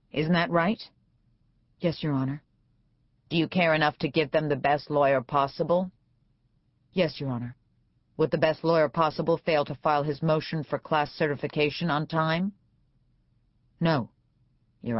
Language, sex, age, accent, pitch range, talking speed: English, female, 40-59, American, 130-170 Hz, 150 wpm